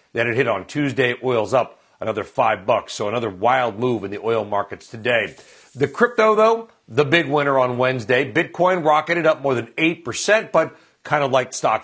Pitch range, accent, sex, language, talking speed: 125-160 Hz, American, male, English, 195 wpm